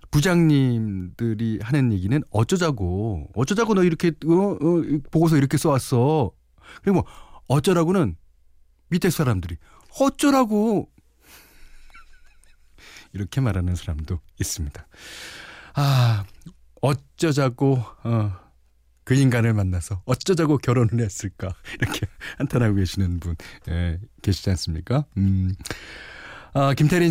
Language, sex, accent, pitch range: Korean, male, native, 95-150 Hz